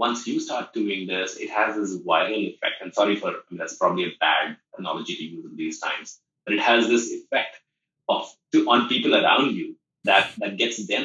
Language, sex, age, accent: English, male, 30-49, Indian